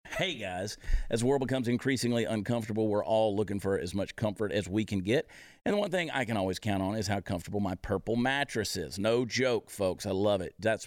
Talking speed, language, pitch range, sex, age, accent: 230 wpm, English, 95-110 Hz, male, 50-69, American